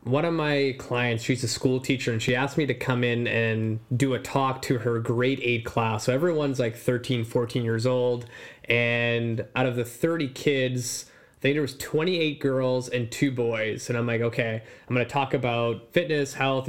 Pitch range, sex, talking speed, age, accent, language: 120-145 Hz, male, 205 wpm, 20-39, American, English